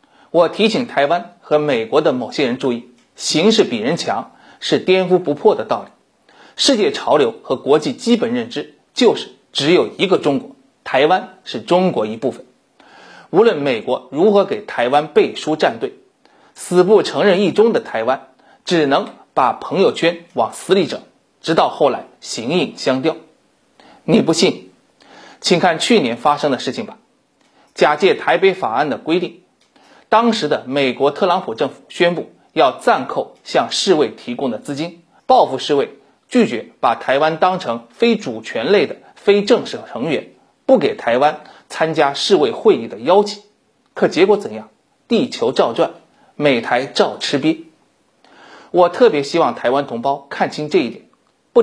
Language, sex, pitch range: Chinese, male, 150-245 Hz